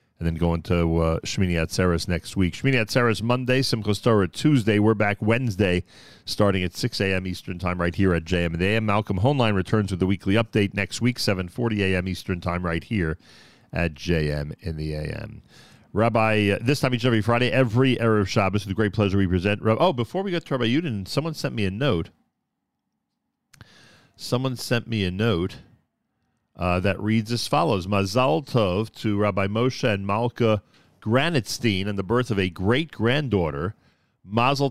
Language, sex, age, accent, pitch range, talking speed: English, male, 40-59, American, 95-120 Hz, 185 wpm